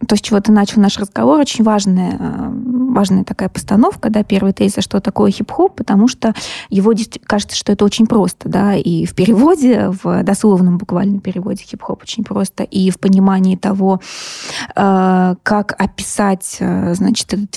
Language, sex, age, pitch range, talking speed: Russian, female, 20-39, 190-225 Hz, 155 wpm